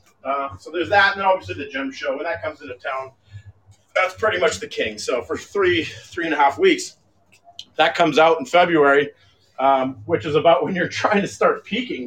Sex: male